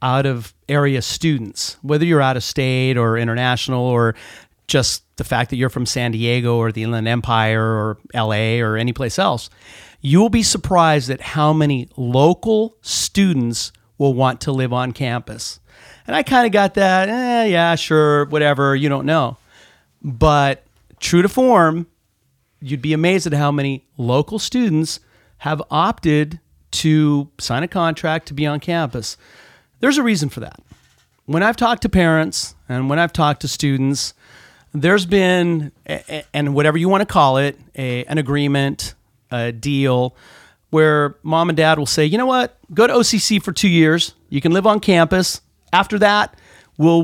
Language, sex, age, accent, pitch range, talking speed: English, male, 40-59, American, 125-170 Hz, 165 wpm